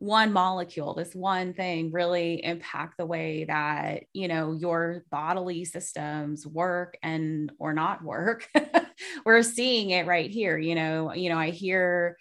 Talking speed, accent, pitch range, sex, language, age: 150 wpm, American, 165-195 Hz, female, English, 20-39